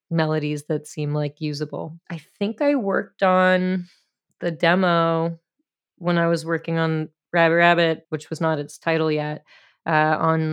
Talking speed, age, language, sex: 155 wpm, 20-39, English, female